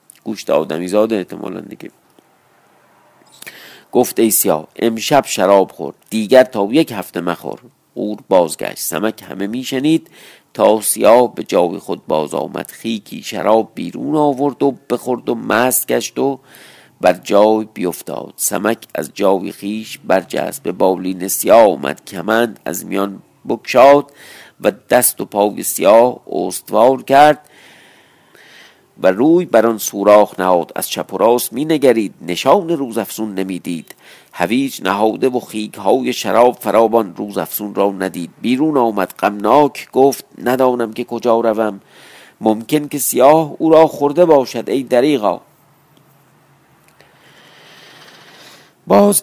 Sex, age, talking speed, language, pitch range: male, 50-69, 125 wpm, Persian, 95-130 Hz